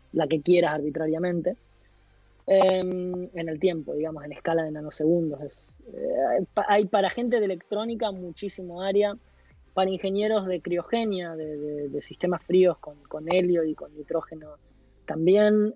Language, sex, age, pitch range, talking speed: Spanish, female, 20-39, 160-205 Hz, 145 wpm